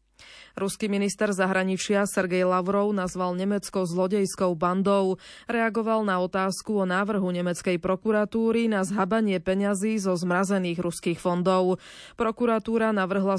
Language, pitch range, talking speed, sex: Slovak, 180-210 Hz, 110 wpm, female